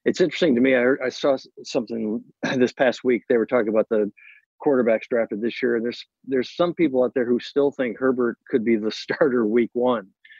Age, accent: 50-69, American